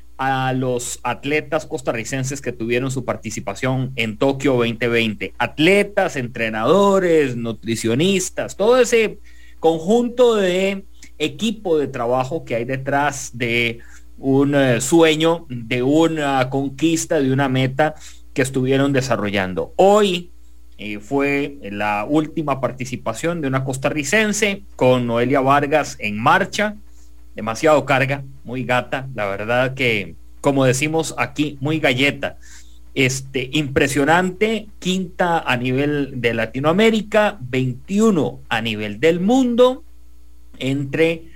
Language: English